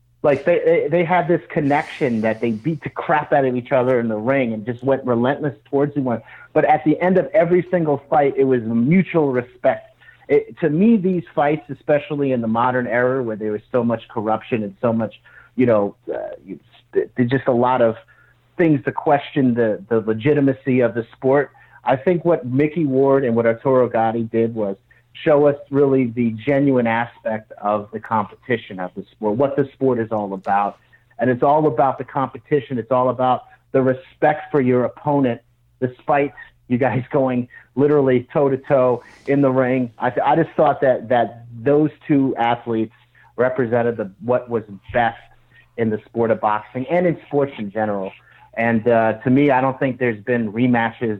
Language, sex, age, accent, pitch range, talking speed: English, male, 40-59, American, 115-145 Hz, 195 wpm